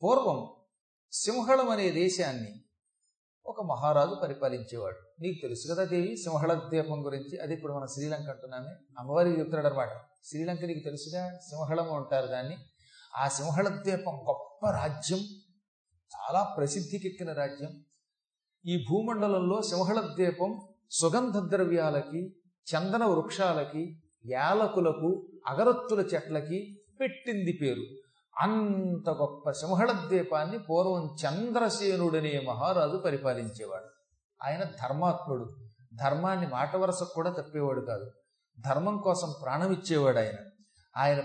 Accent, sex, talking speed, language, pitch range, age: native, male, 100 wpm, Telugu, 145-190 Hz, 40-59